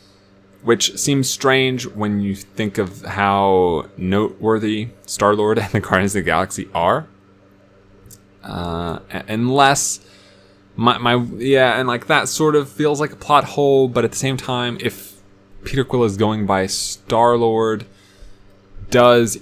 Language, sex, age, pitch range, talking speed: English, male, 20-39, 95-115 Hz, 145 wpm